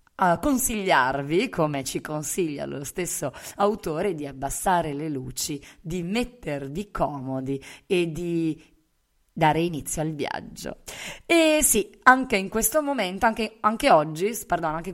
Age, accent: 30-49, native